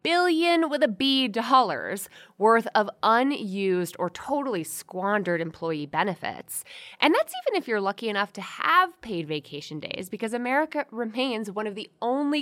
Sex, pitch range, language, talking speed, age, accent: female, 175-255 Hz, English, 155 wpm, 20-39, American